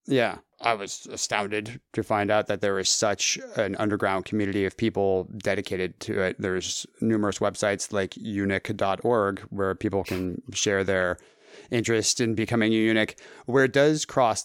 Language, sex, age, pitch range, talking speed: English, male, 30-49, 100-120 Hz, 160 wpm